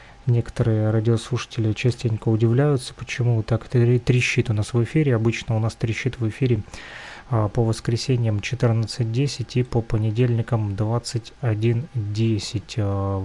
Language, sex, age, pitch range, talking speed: Russian, male, 20-39, 110-125 Hz, 110 wpm